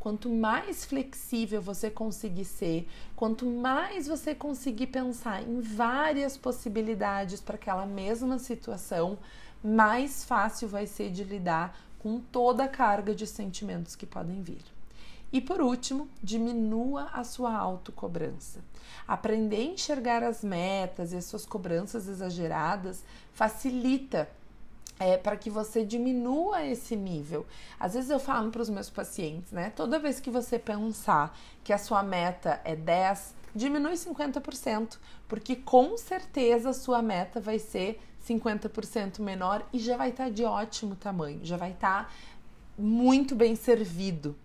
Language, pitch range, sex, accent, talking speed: Portuguese, 200-250 Hz, female, Brazilian, 140 wpm